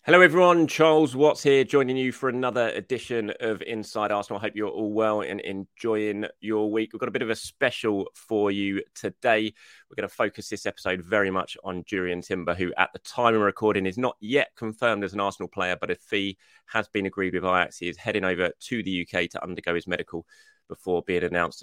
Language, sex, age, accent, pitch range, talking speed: English, male, 30-49, British, 95-120 Hz, 220 wpm